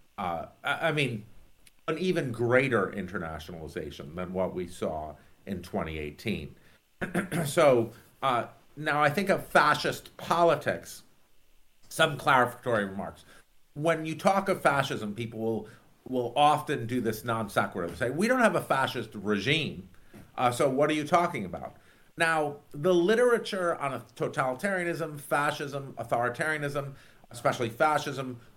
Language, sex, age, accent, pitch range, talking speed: English, male, 50-69, American, 120-165 Hz, 125 wpm